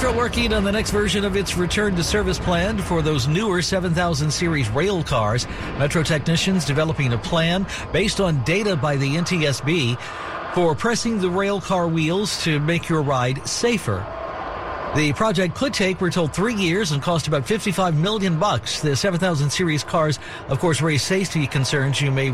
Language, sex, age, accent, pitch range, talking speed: English, male, 60-79, American, 135-180 Hz, 175 wpm